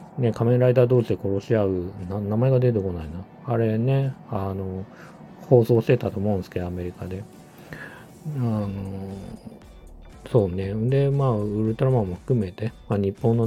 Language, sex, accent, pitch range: Japanese, male, native, 90-115 Hz